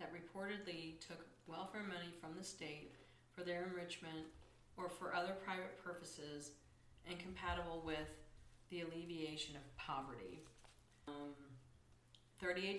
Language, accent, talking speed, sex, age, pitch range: English, American, 115 wpm, female, 40-59, 150-185 Hz